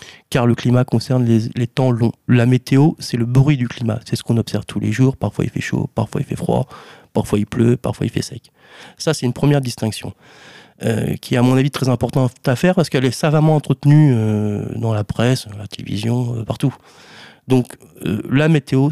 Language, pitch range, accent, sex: French, 120-150 Hz, French, male